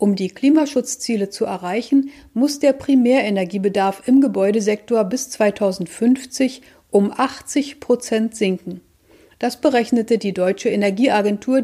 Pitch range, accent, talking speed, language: 195-255 Hz, German, 110 wpm, German